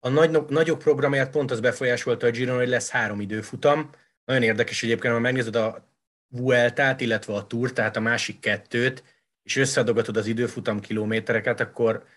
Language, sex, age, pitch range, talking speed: Hungarian, male, 30-49, 110-130 Hz, 165 wpm